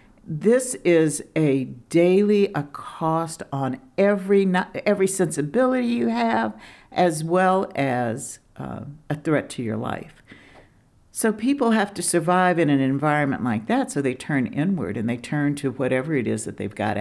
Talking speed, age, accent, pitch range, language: 160 wpm, 60-79, American, 130-180 Hz, English